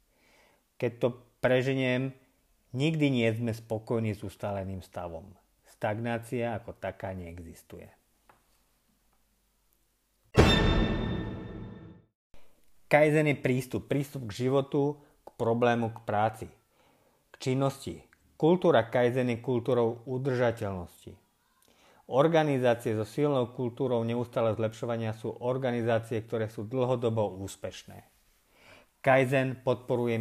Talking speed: 90 wpm